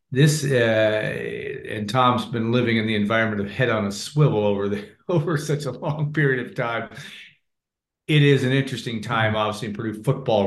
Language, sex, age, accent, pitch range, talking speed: English, male, 40-59, American, 105-125 Hz, 185 wpm